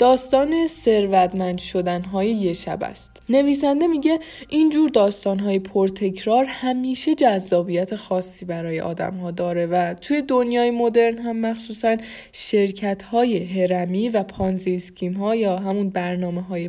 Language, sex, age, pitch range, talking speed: Persian, female, 20-39, 185-245 Hz, 130 wpm